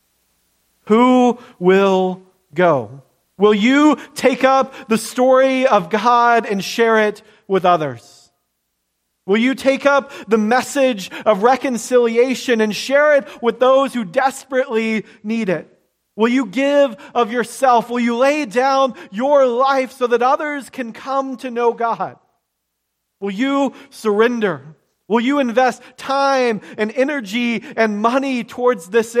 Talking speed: 135 wpm